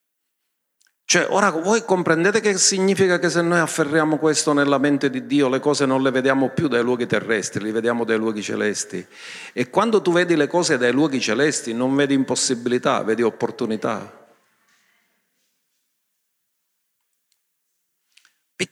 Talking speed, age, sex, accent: 140 wpm, 50-69, male, native